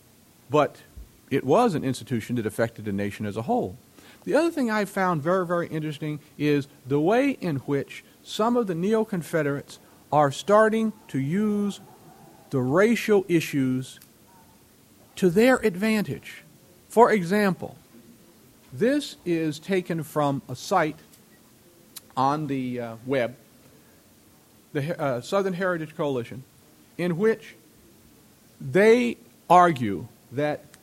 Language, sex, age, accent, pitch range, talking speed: English, male, 50-69, American, 130-200 Hz, 120 wpm